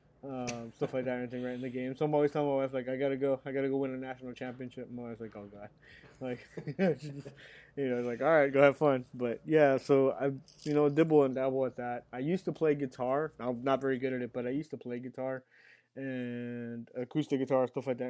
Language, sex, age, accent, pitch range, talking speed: English, male, 20-39, American, 120-135 Hz, 250 wpm